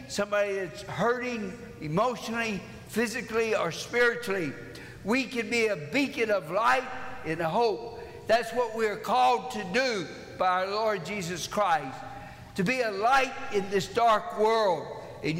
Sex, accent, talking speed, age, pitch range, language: male, American, 150 wpm, 60-79, 195-235 Hz, English